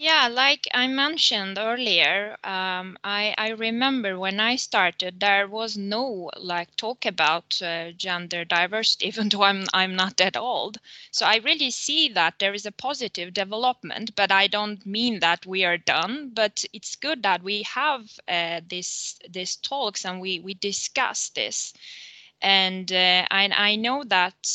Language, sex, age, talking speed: English, female, 20-39, 165 wpm